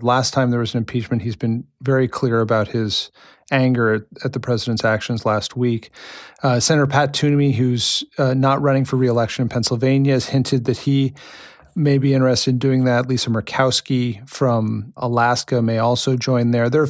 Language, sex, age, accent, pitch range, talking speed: English, male, 40-59, American, 115-135 Hz, 185 wpm